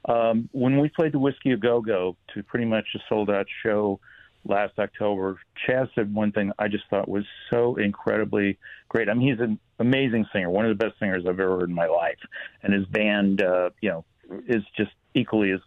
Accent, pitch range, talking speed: American, 100-120 Hz, 205 wpm